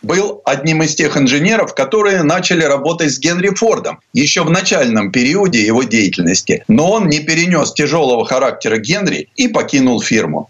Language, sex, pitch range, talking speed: Russian, male, 150-205 Hz, 155 wpm